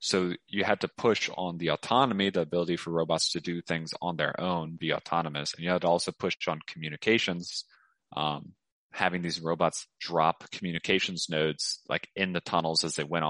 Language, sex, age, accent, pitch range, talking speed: English, male, 30-49, American, 80-90 Hz, 190 wpm